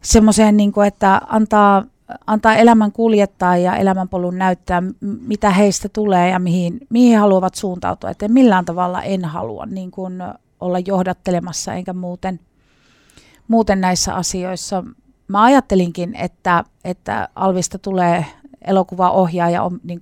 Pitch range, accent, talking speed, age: 180-205 Hz, native, 120 wpm, 30-49